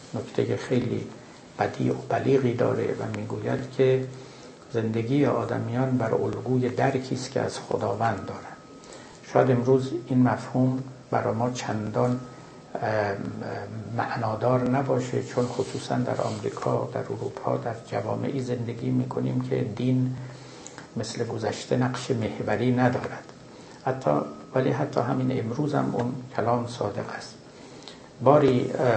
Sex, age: male, 60-79